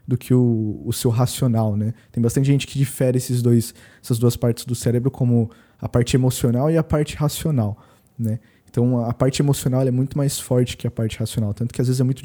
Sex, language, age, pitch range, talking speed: male, Portuguese, 20-39, 120-145 Hz, 230 wpm